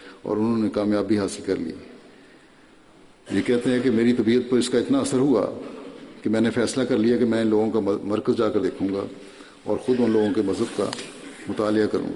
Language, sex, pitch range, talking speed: Urdu, male, 100-120 Hz, 215 wpm